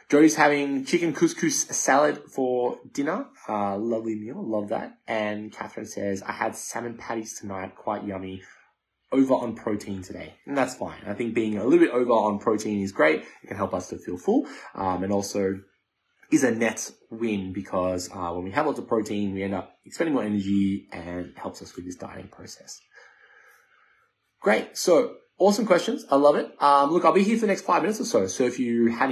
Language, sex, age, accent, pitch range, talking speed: English, male, 20-39, Australian, 105-140 Hz, 200 wpm